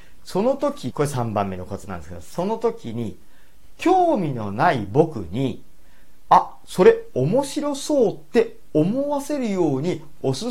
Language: Japanese